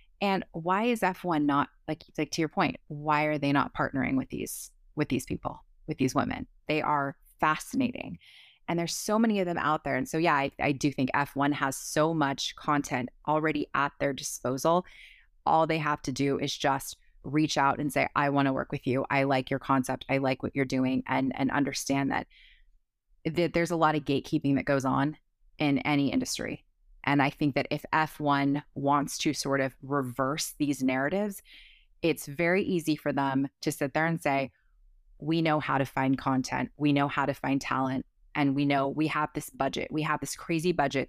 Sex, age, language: female, 20-39, English